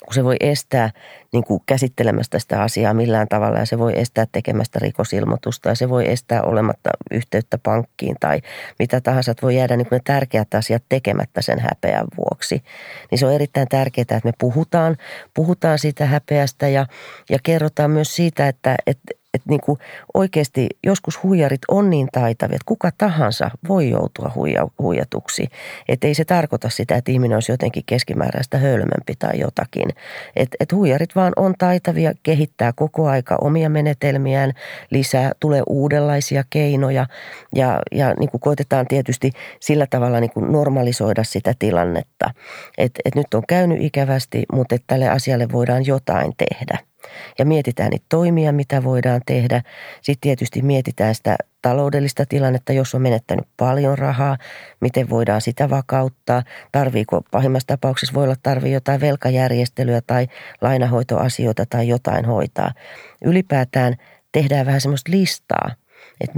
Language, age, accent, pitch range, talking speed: Finnish, 40-59, native, 120-145 Hz, 145 wpm